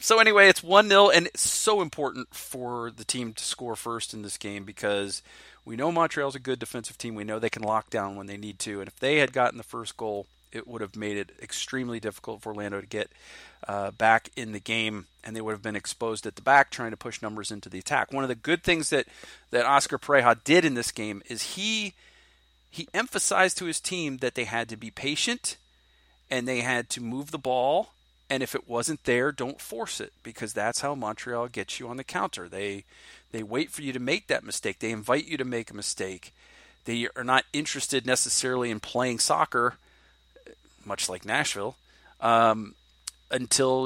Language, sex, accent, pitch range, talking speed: English, male, American, 105-130 Hz, 210 wpm